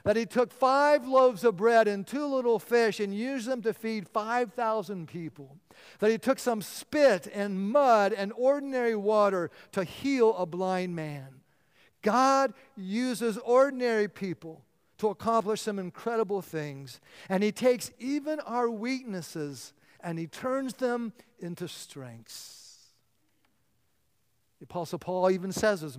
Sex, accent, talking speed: male, American, 140 wpm